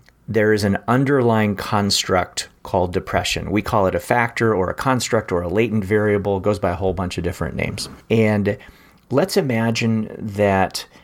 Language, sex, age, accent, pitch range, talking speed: English, male, 40-59, American, 95-120 Hz, 175 wpm